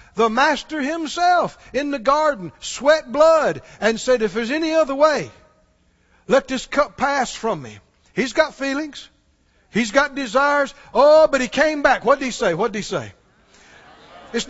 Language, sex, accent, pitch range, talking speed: English, male, American, 190-290 Hz, 170 wpm